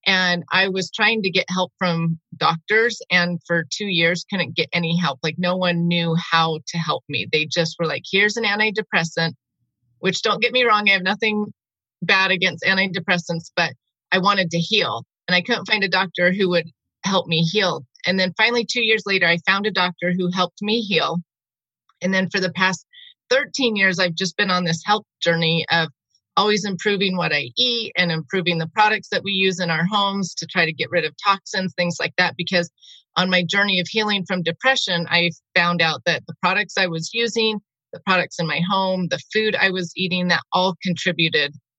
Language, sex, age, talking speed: English, female, 30-49, 205 wpm